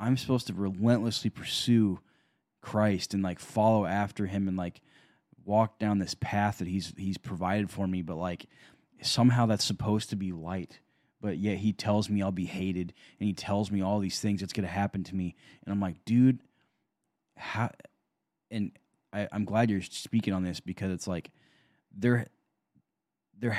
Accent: American